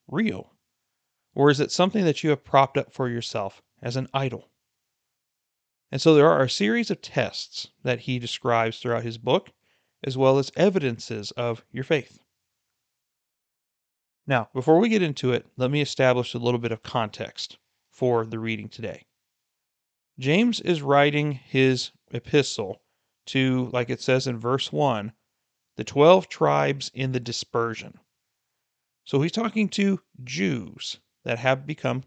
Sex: male